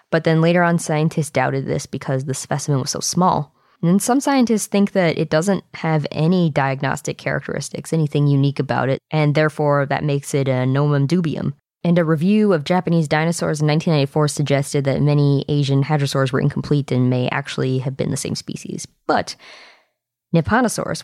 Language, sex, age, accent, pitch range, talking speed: English, female, 20-39, American, 140-170 Hz, 175 wpm